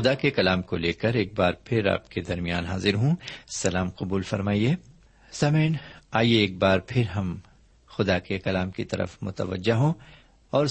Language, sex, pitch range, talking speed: Urdu, male, 95-130 Hz, 175 wpm